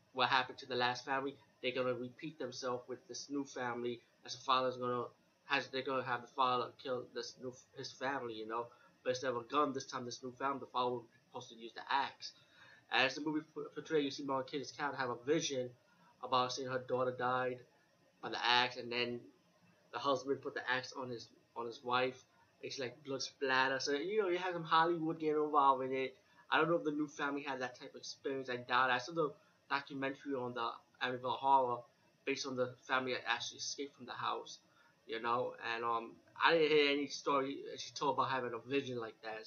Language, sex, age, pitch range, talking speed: English, male, 20-39, 125-140 Hz, 225 wpm